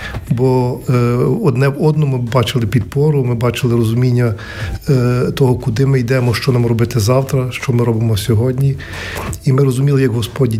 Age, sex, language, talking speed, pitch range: 40-59, male, Ukrainian, 145 wpm, 115-135 Hz